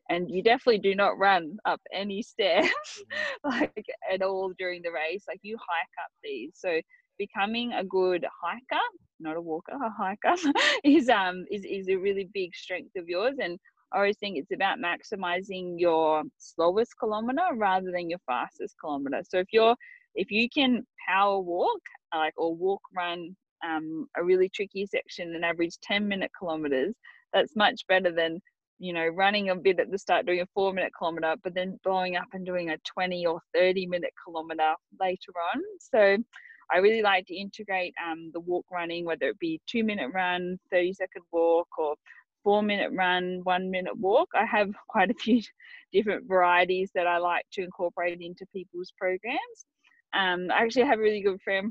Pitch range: 175-230 Hz